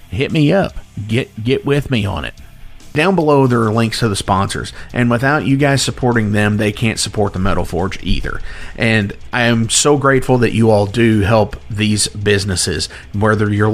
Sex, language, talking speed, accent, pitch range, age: male, English, 190 wpm, American, 105-125 Hz, 40-59